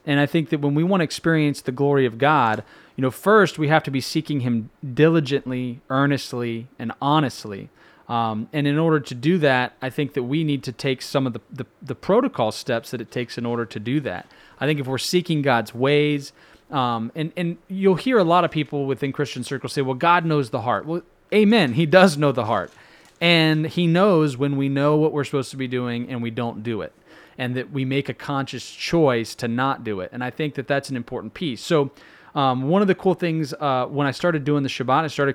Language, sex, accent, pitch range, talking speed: English, male, American, 130-160 Hz, 235 wpm